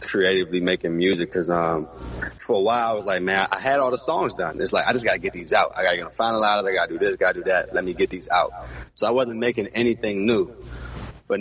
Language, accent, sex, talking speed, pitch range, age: English, American, male, 290 wpm, 85-115 Hz, 20-39